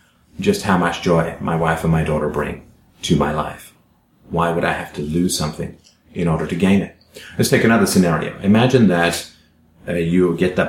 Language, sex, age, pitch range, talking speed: English, male, 30-49, 85-100 Hz, 195 wpm